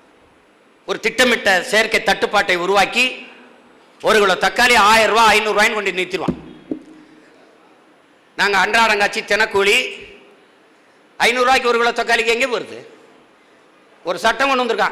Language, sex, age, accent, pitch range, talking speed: Tamil, male, 50-69, native, 190-250 Hz, 100 wpm